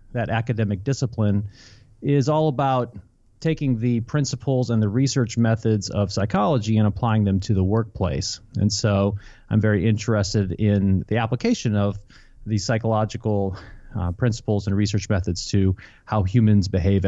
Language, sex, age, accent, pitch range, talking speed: English, male, 30-49, American, 105-135 Hz, 145 wpm